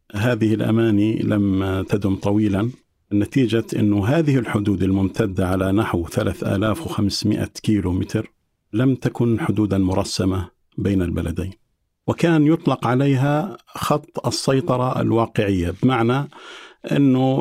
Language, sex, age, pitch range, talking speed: Arabic, male, 50-69, 100-125 Hz, 100 wpm